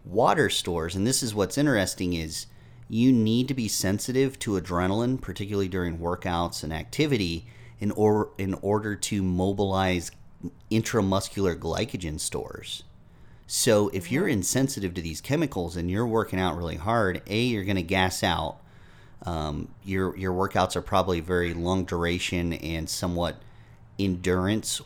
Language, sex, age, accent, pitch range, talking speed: English, male, 30-49, American, 85-105 Hz, 145 wpm